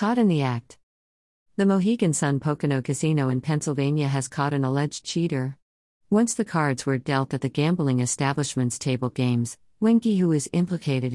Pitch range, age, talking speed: 130-155 Hz, 50-69, 165 wpm